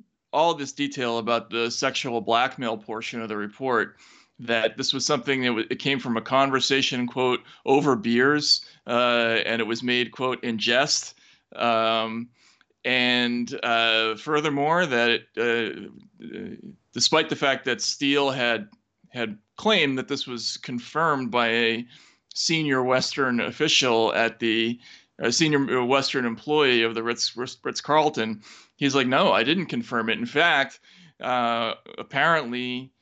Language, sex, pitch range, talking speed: English, male, 120-145 Hz, 145 wpm